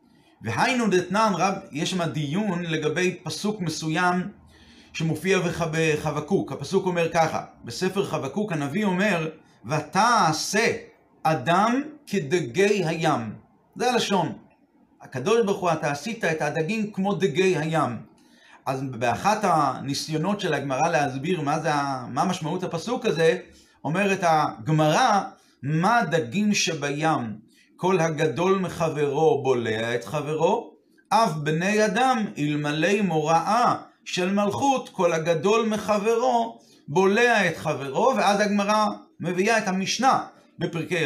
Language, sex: Hebrew, male